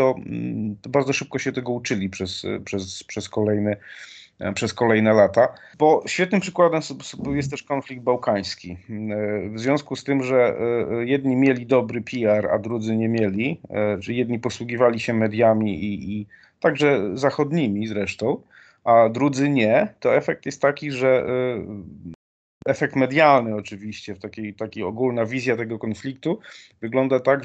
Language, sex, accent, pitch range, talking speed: Polish, male, native, 105-135 Hz, 135 wpm